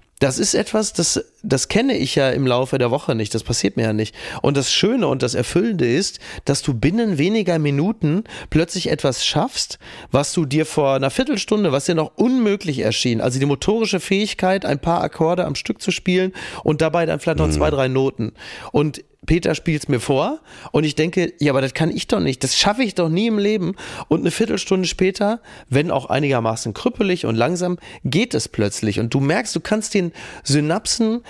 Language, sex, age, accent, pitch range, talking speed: German, male, 30-49, German, 130-175 Hz, 205 wpm